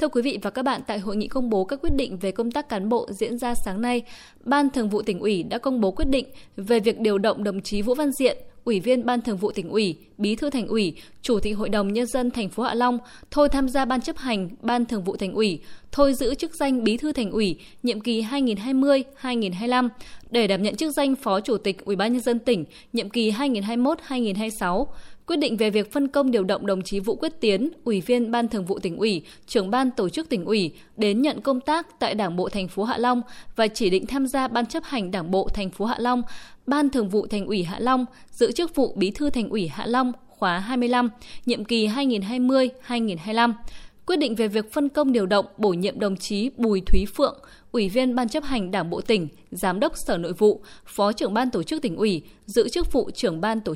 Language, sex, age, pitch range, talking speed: Vietnamese, female, 10-29, 205-260 Hz, 240 wpm